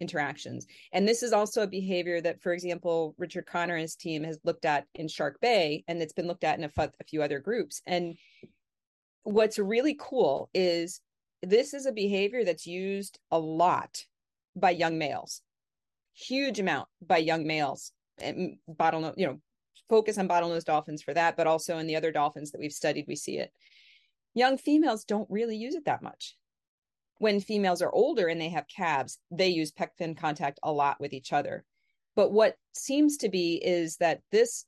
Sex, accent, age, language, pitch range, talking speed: female, American, 40-59, English, 160-200 Hz, 190 wpm